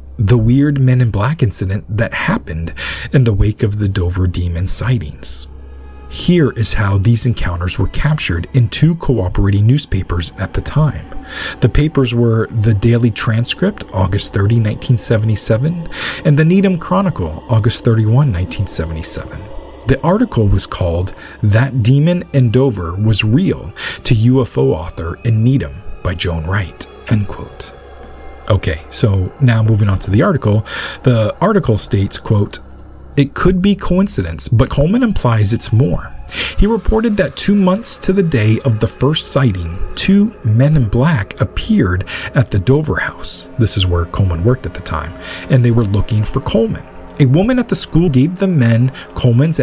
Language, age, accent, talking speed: English, 40-59, American, 155 wpm